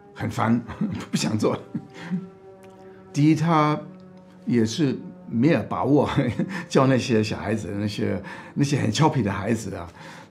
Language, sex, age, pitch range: Chinese, male, 60-79, 100-135 Hz